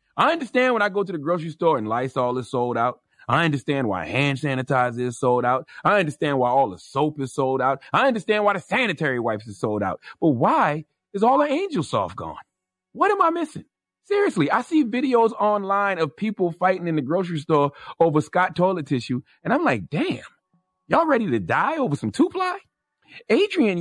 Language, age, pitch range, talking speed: English, 30-49, 140-210 Hz, 200 wpm